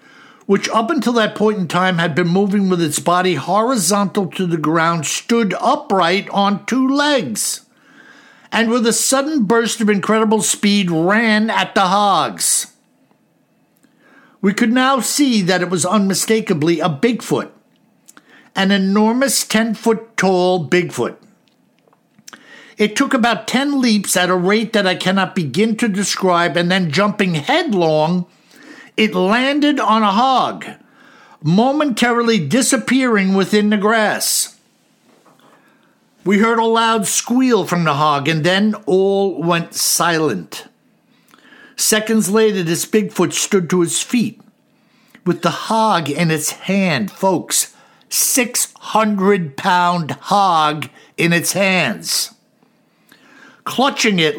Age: 60-79